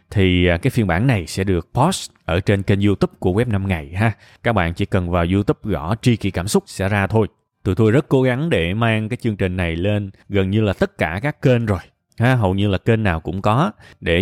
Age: 20-39